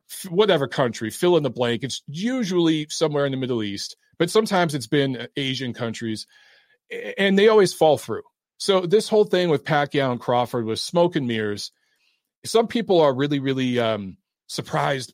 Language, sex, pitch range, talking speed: English, male, 130-175 Hz, 165 wpm